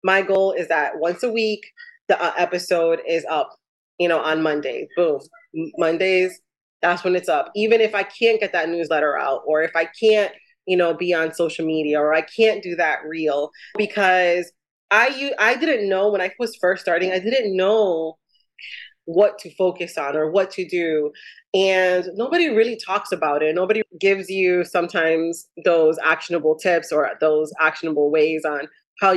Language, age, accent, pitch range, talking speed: English, 30-49, American, 165-220 Hz, 175 wpm